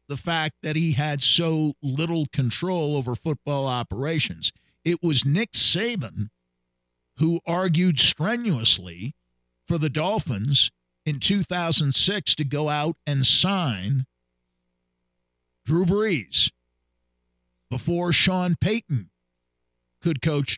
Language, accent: English, American